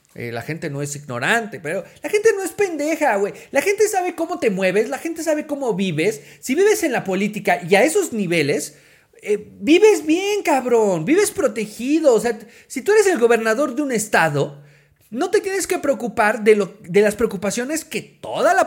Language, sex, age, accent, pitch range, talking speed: Spanish, male, 40-59, Mexican, 200-315 Hz, 200 wpm